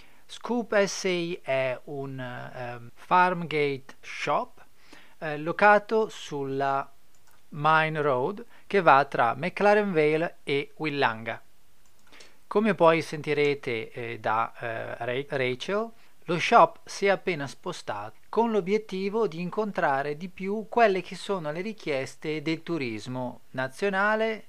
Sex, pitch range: male, 135-195 Hz